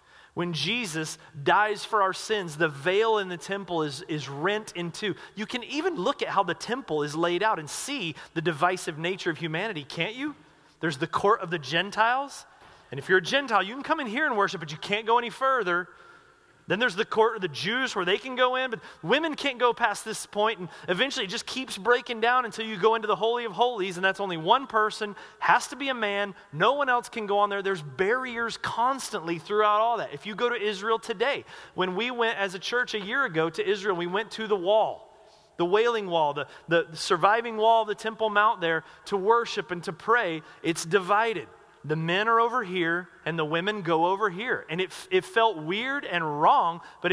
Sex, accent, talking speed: male, American, 225 wpm